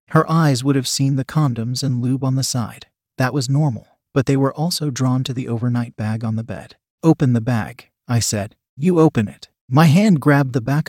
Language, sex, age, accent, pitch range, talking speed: English, male, 40-59, American, 120-150 Hz, 220 wpm